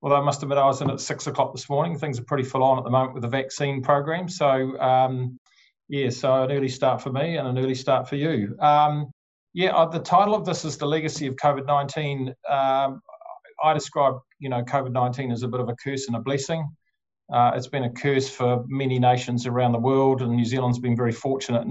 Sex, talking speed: male, 225 wpm